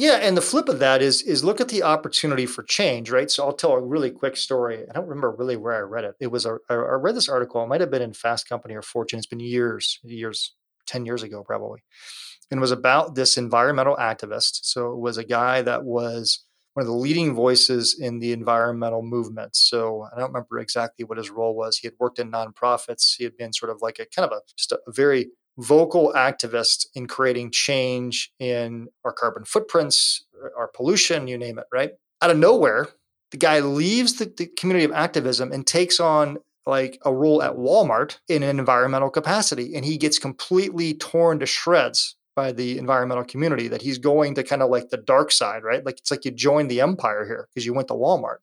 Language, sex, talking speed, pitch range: English, male, 220 wpm, 120-155 Hz